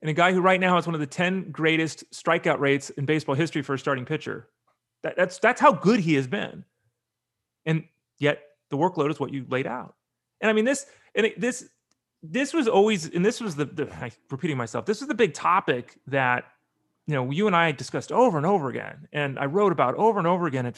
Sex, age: male, 30-49